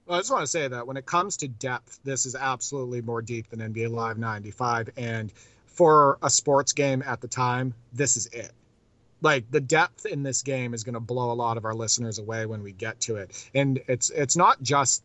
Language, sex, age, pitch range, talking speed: English, male, 40-59, 115-145 Hz, 230 wpm